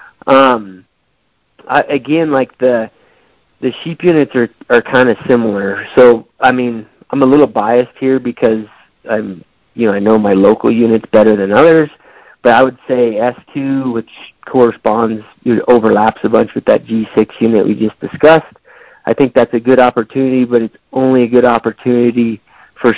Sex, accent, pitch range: male, American, 110-125 Hz